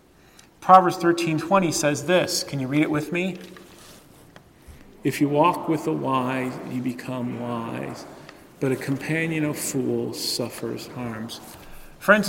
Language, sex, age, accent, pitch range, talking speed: English, male, 40-59, American, 125-160 Hz, 130 wpm